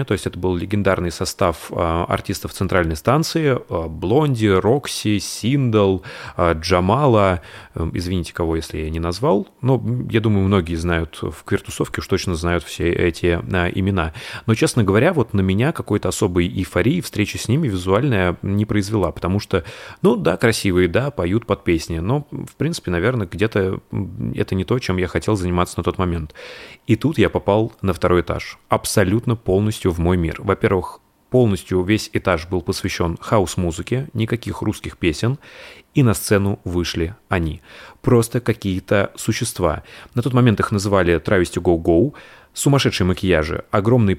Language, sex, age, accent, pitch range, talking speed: Russian, male, 30-49, native, 90-115 Hz, 150 wpm